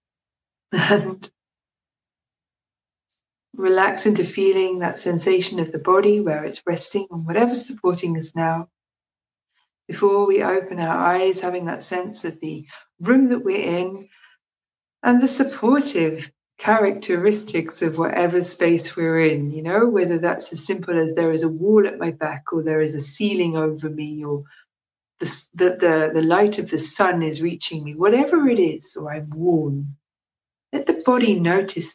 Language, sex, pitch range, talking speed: English, female, 165-210 Hz, 150 wpm